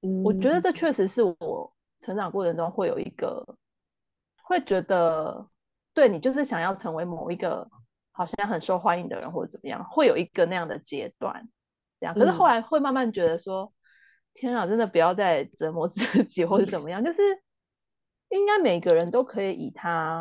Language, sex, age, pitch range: Chinese, female, 30-49, 175-250 Hz